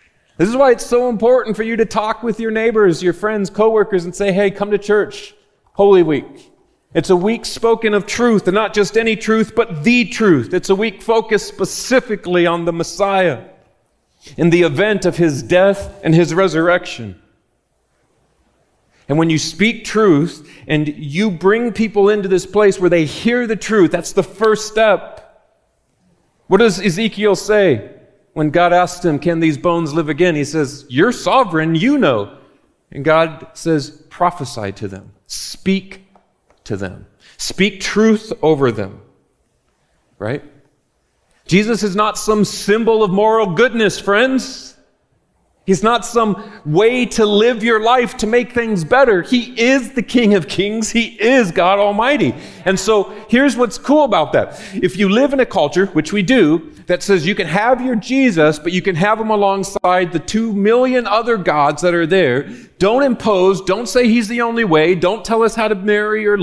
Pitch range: 170-225 Hz